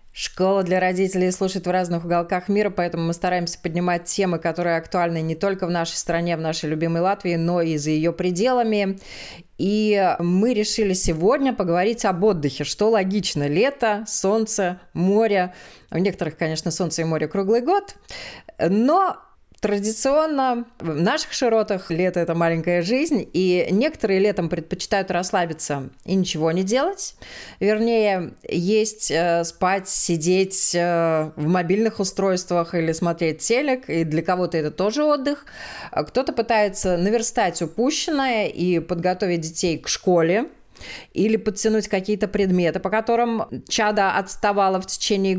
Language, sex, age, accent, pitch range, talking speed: Russian, female, 20-39, native, 175-220 Hz, 135 wpm